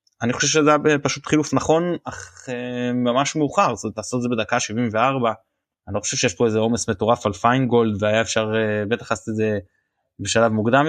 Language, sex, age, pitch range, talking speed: Hebrew, male, 20-39, 110-135 Hz, 205 wpm